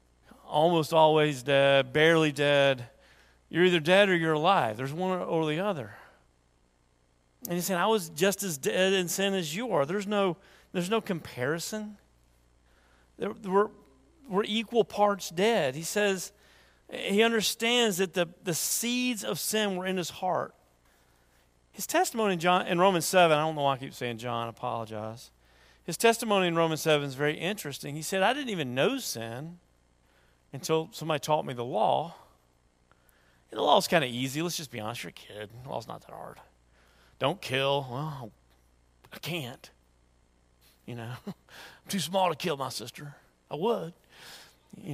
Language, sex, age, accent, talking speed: English, male, 40-59, American, 170 wpm